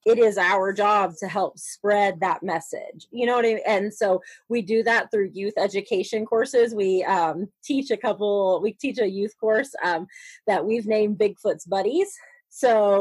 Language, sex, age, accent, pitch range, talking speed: English, female, 30-49, American, 185-230 Hz, 185 wpm